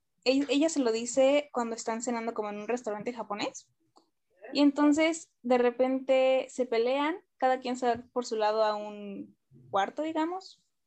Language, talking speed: Spanish, 160 wpm